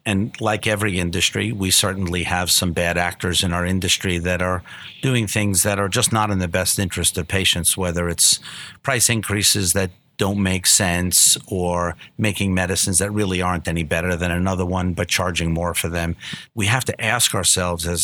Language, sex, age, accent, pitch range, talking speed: English, male, 50-69, American, 90-105 Hz, 195 wpm